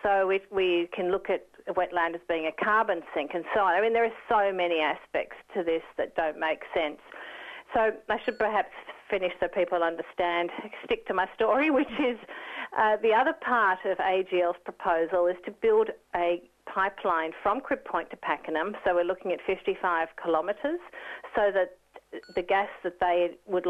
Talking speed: 180 wpm